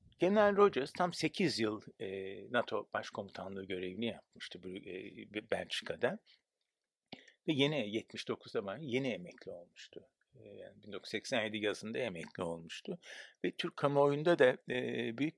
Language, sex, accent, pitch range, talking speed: Turkish, male, native, 110-145 Hz, 105 wpm